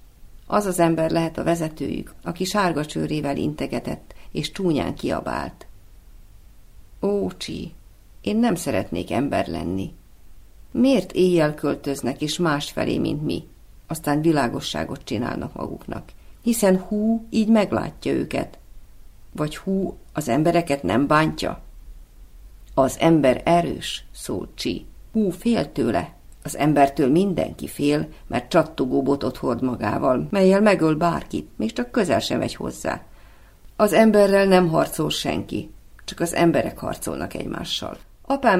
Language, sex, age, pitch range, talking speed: Hungarian, female, 50-69, 110-180 Hz, 125 wpm